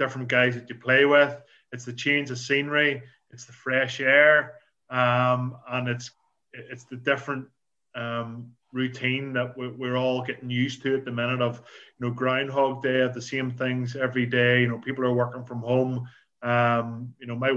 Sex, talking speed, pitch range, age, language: male, 185 wpm, 120-130 Hz, 20-39, English